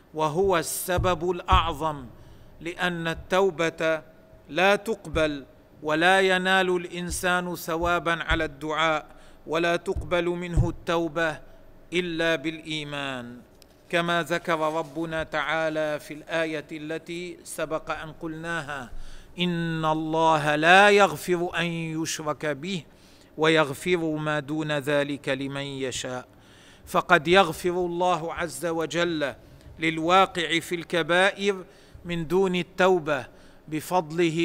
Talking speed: 95 wpm